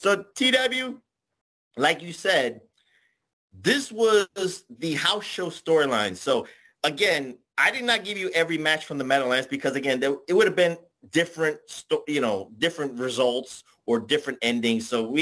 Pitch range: 140-220 Hz